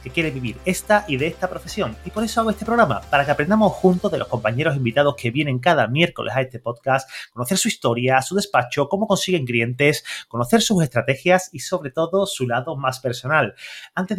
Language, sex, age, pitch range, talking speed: Spanish, male, 30-49, 130-185 Hz, 205 wpm